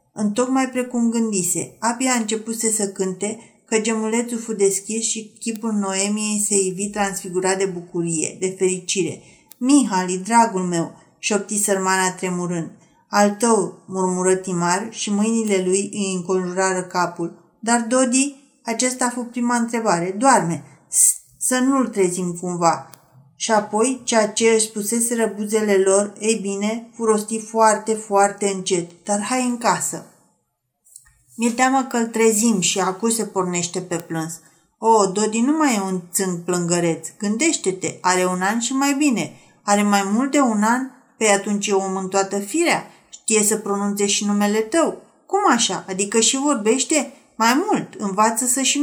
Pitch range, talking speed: 190-235 Hz, 150 wpm